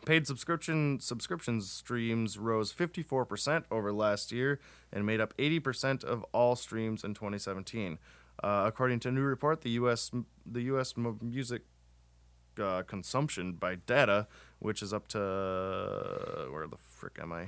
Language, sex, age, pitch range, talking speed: English, male, 20-39, 100-125 Hz, 135 wpm